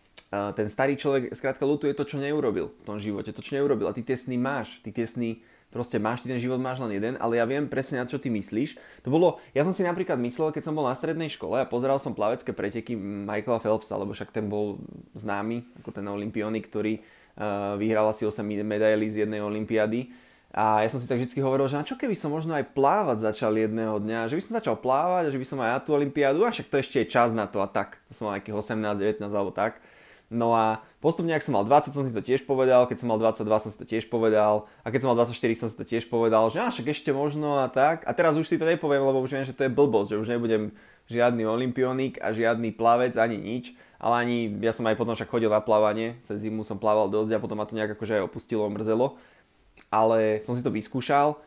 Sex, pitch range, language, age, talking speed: male, 110-135 Hz, Slovak, 20-39, 240 wpm